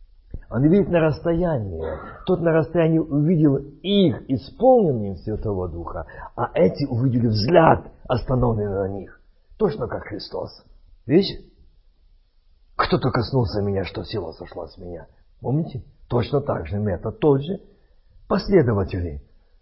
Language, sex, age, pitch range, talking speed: Russian, male, 50-69, 80-130 Hz, 120 wpm